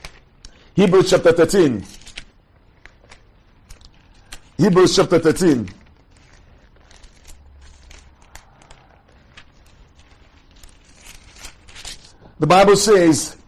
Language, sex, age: English, male, 50-69